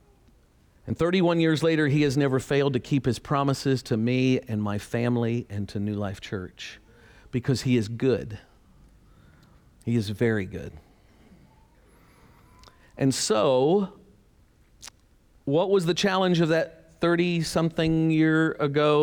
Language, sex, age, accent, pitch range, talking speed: English, male, 50-69, American, 110-155 Hz, 125 wpm